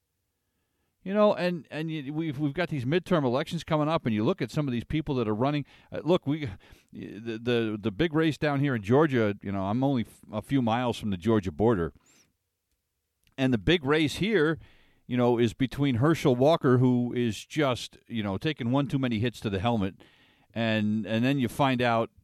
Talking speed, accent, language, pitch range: 210 wpm, American, English, 100-160 Hz